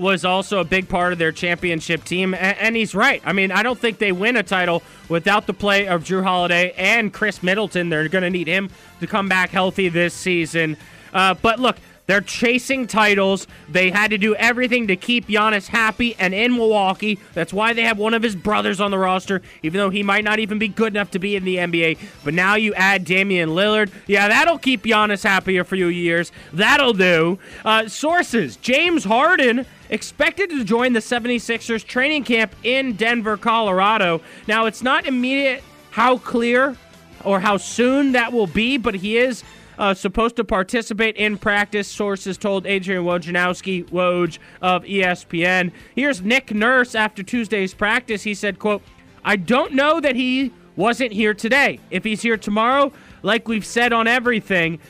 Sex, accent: male, American